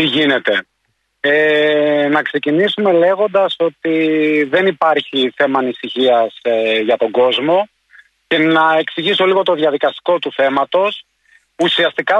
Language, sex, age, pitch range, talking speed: Greek, male, 30-49, 150-195 Hz, 110 wpm